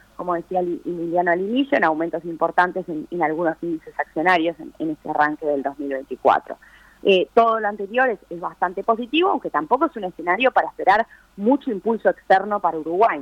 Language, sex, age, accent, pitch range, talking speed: Spanish, female, 20-39, Argentinian, 160-205 Hz, 175 wpm